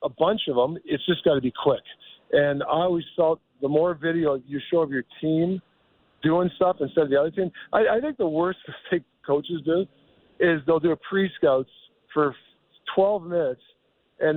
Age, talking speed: 50-69, 190 wpm